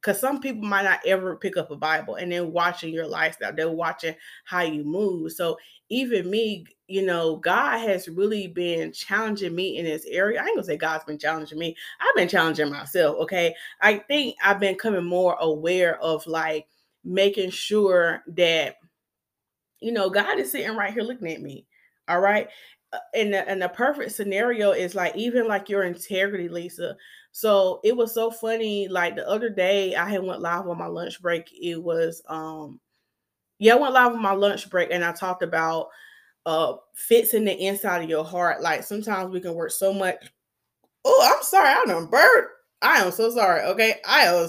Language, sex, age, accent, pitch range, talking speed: English, female, 20-39, American, 170-215 Hz, 190 wpm